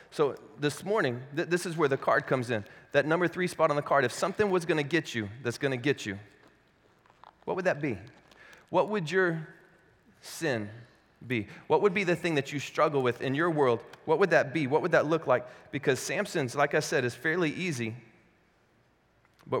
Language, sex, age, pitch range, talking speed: English, male, 30-49, 135-175 Hz, 210 wpm